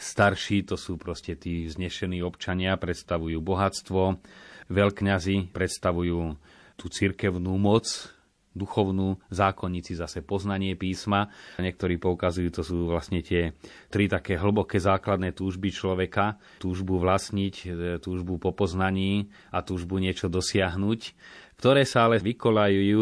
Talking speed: 115 wpm